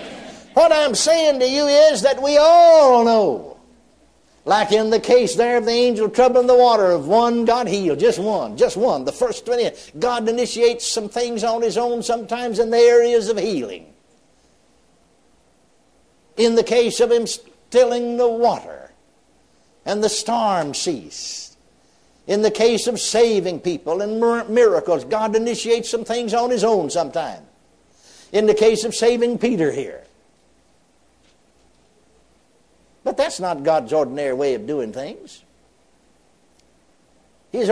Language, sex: English, male